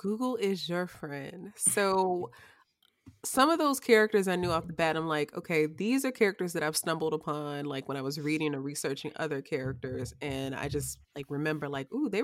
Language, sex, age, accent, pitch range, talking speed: English, female, 20-39, American, 150-185 Hz, 200 wpm